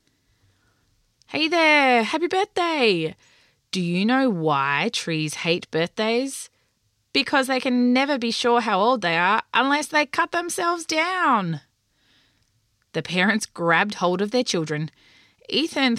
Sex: female